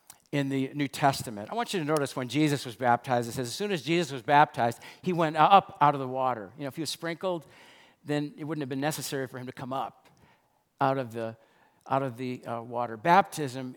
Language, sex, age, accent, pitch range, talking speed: English, male, 50-69, American, 130-165 Hz, 235 wpm